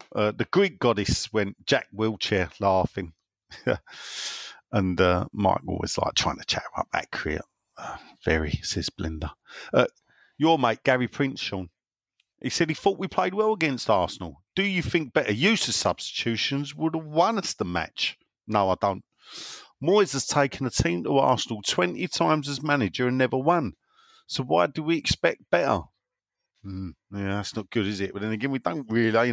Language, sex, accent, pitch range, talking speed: English, male, British, 105-150 Hz, 180 wpm